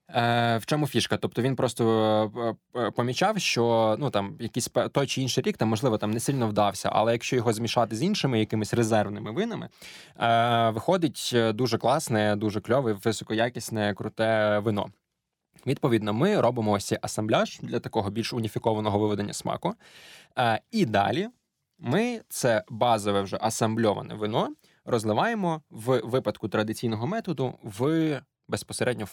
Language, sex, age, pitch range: Ukrainian, male, 20-39, 110-135 Hz